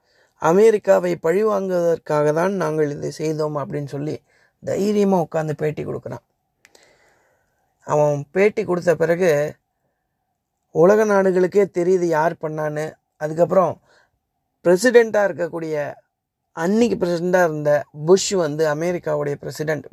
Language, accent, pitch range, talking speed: Tamil, native, 155-190 Hz, 95 wpm